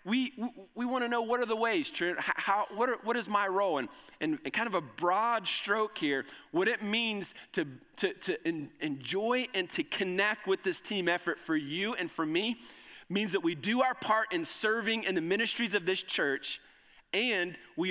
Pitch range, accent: 170-245 Hz, American